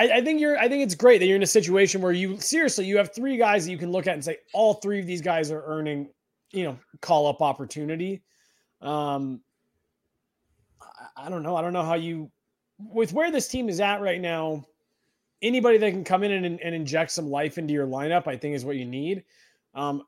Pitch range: 145-195 Hz